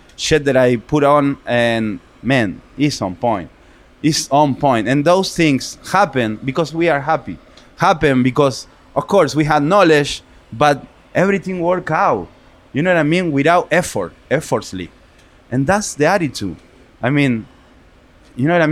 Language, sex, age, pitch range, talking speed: English, male, 20-39, 125-155 Hz, 160 wpm